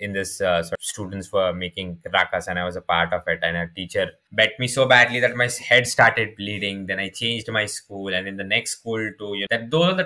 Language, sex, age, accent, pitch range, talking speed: English, male, 20-39, Indian, 110-130 Hz, 270 wpm